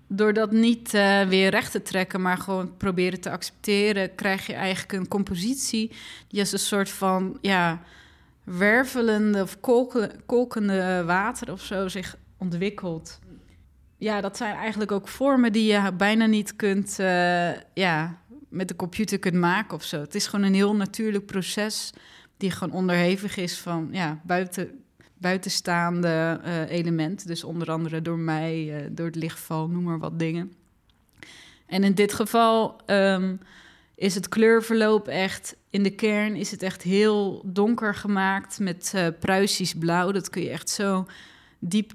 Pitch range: 175-205 Hz